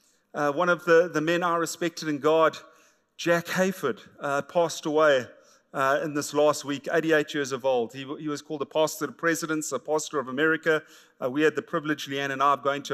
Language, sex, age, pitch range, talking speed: English, male, 40-59, 145-175 Hz, 220 wpm